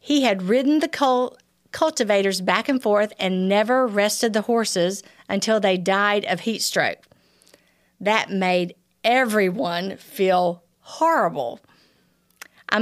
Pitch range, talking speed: 195-245 Hz, 115 wpm